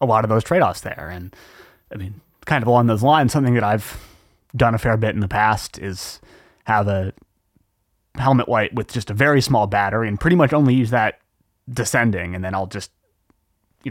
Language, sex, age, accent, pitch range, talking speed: English, male, 30-49, American, 95-120 Hz, 205 wpm